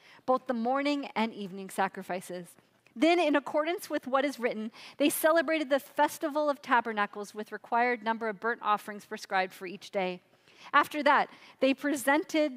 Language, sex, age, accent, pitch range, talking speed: English, female, 40-59, American, 210-290 Hz, 160 wpm